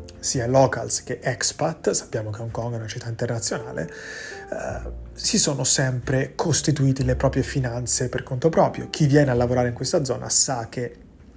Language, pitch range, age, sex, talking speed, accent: Italian, 120-140 Hz, 30-49, male, 165 wpm, native